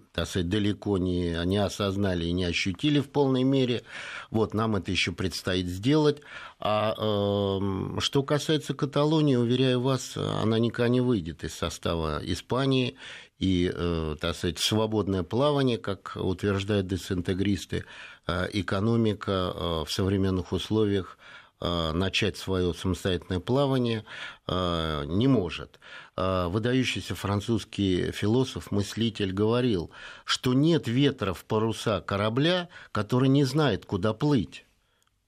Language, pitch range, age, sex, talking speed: Russian, 95-130 Hz, 50-69, male, 100 wpm